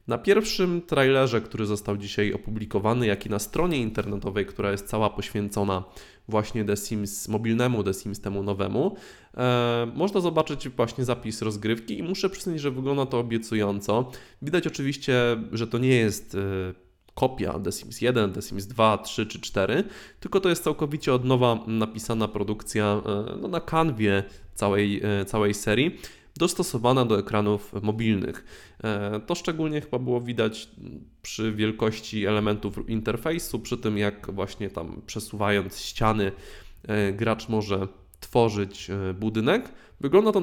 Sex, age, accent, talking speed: male, 20-39, native, 135 wpm